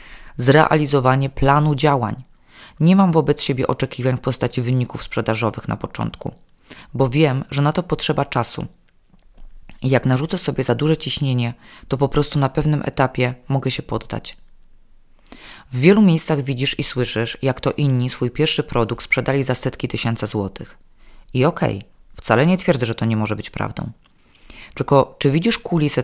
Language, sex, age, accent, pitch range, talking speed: Polish, female, 20-39, native, 120-155 Hz, 160 wpm